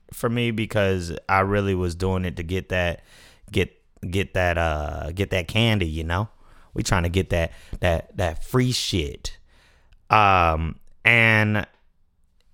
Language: English